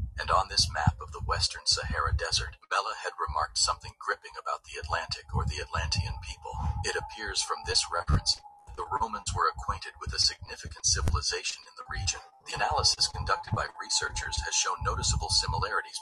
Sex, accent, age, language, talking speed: male, American, 40-59, English, 175 wpm